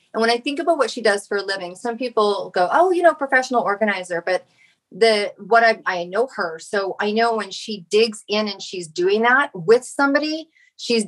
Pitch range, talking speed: 185-230 Hz, 215 wpm